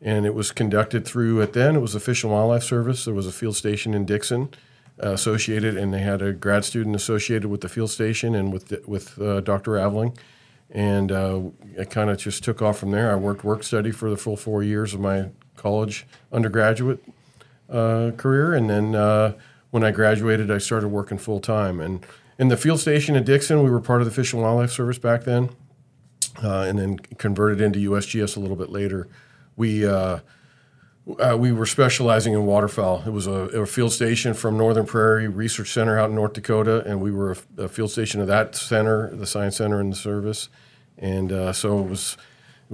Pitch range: 100-120 Hz